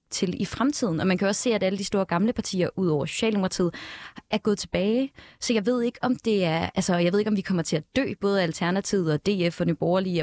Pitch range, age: 170-210 Hz, 20-39